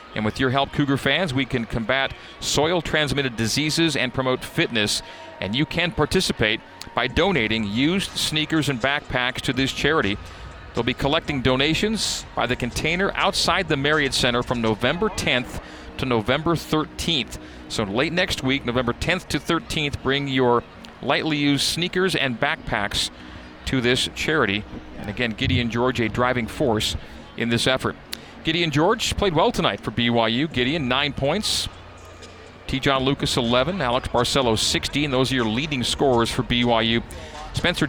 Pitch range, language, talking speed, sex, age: 115-145 Hz, English, 155 wpm, male, 40-59